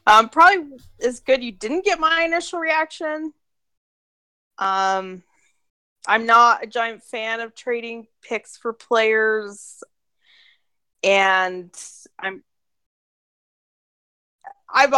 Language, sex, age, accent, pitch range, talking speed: English, female, 20-39, American, 170-230 Hz, 95 wpm